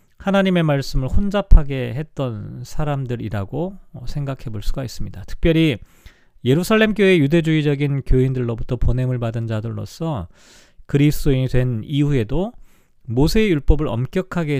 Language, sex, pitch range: Korean, male, 120-170 Hz